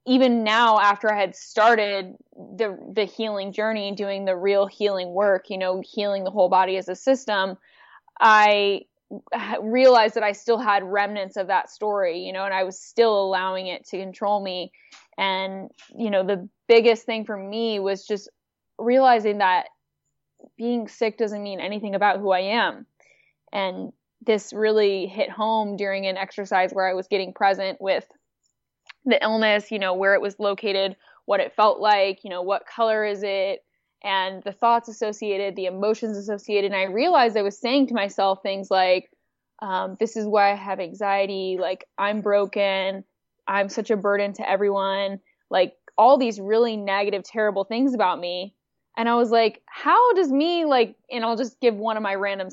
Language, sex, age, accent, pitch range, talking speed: English, female, 10-29, American, 195-225 Hz, 180 wpm